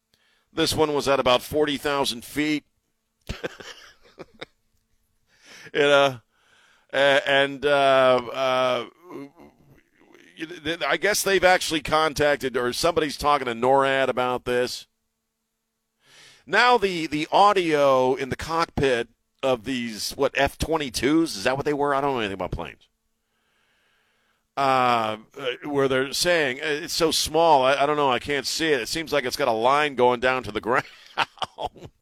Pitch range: 120-150 Hz